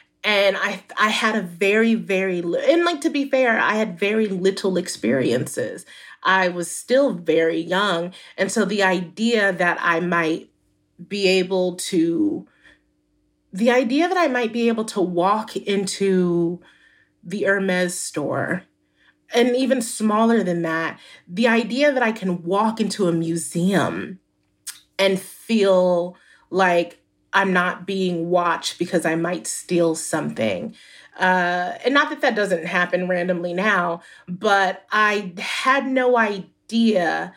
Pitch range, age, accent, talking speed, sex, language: 175-225 Hz, 30-49, American, 140 wpm, female, English